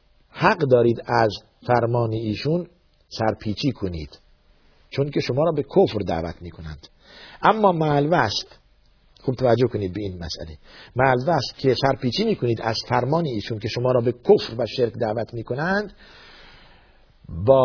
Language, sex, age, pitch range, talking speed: Persian, male, 50-69, 95-140 Hz, 140 wpm